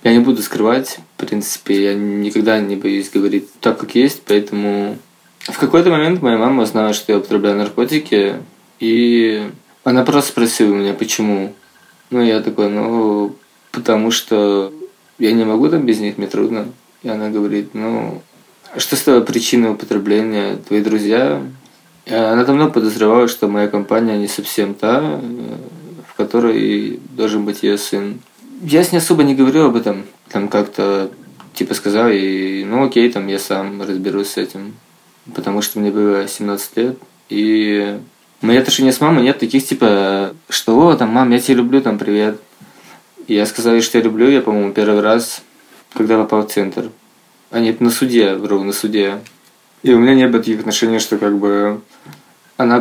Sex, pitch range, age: male, 100-120 Hz, 20-39